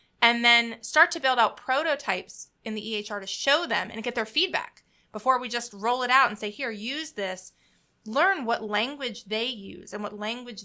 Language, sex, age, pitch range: English, female, 30-49, 210-250 Hz